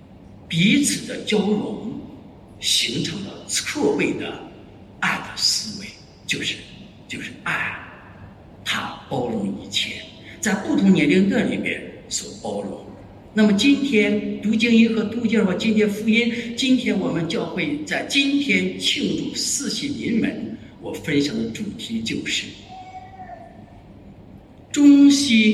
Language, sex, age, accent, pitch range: English, male, 60-79, Chinese, 150-245 Hz